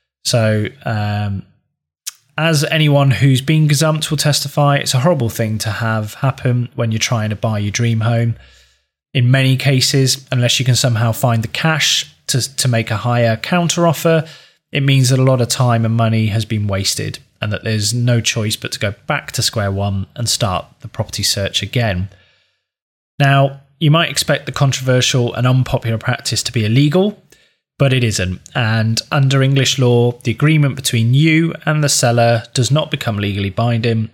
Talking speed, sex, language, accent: 180 wpm, male, English, British